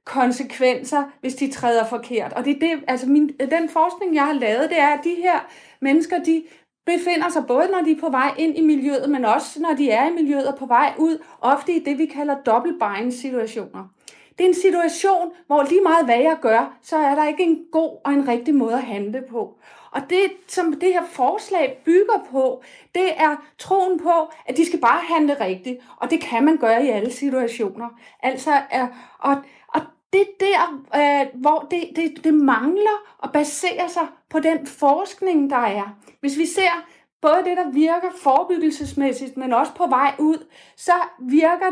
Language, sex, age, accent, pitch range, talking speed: Danish, female, 30-49, native, 265-335 Hz, 195 wpm